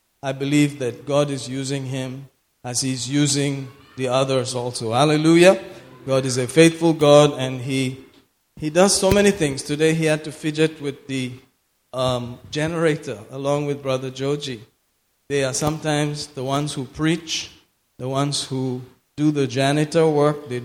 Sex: male